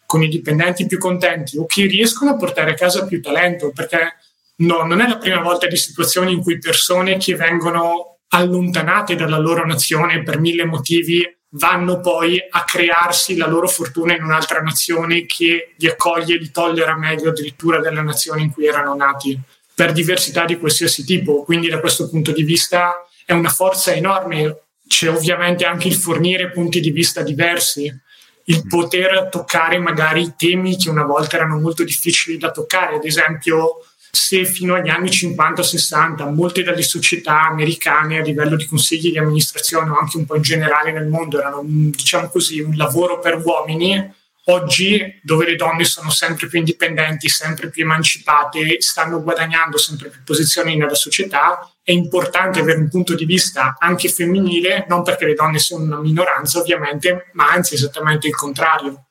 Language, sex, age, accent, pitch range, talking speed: Italian, male, 30-49, native, 155-175 Hz, 170 wpm